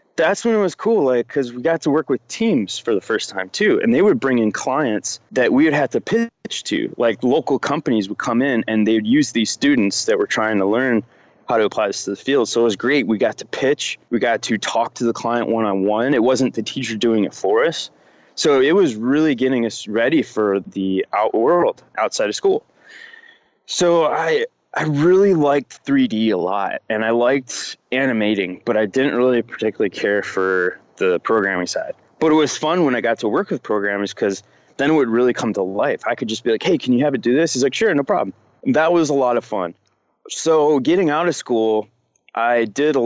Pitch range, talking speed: 105-160 Hz, 230 wpm